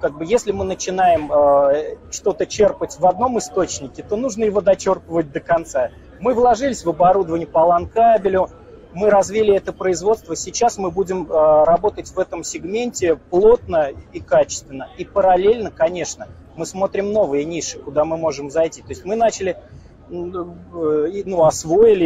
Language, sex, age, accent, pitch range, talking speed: Russian, male, 30-49, native, 155-215 Hz, 145 wpm